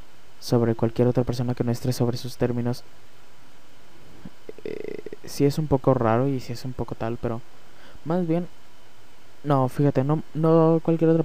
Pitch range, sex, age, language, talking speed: 115-135 Hz, male, 20-39, Spanish, 175 wpm